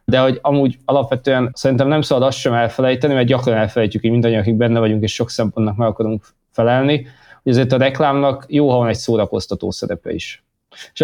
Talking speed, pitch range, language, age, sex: 200 wpm, 110-130 Hz, Hungarian, 20-39, male